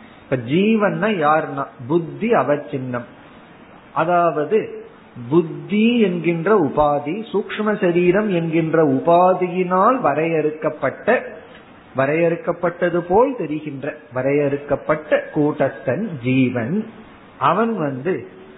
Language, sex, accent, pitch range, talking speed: Tamil, male, native, 150-205 Hz, 70 wpm